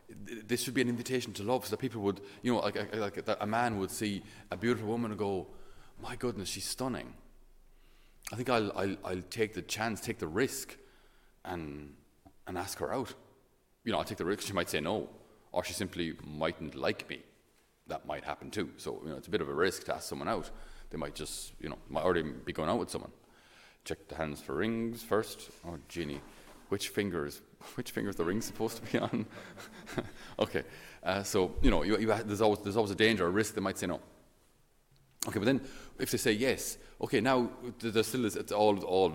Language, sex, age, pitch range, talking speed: English, male, 30-49, 90-120 Hz, 220 wpm